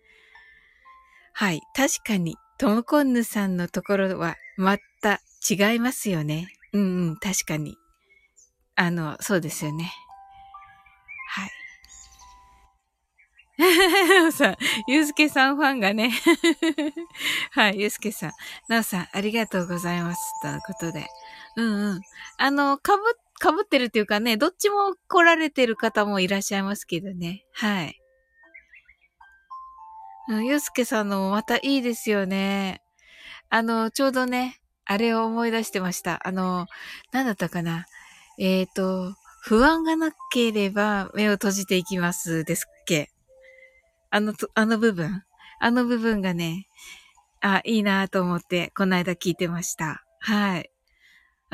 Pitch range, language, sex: 185-275 Hz, Japanese, female